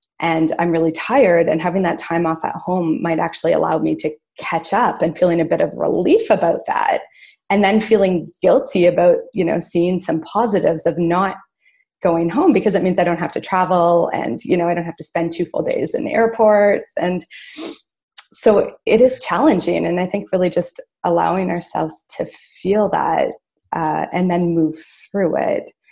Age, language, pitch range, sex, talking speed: 20-39, English, 170-220 Hz, female, 190 wpm